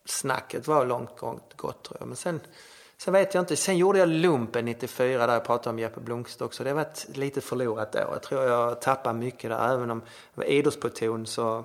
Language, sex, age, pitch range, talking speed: Swedish, male, 30-49, 115-140 Hz, 220 wpm